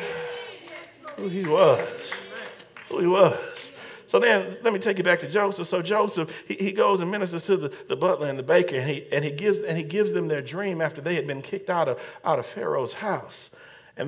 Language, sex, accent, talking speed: English, male, American, 220 wpm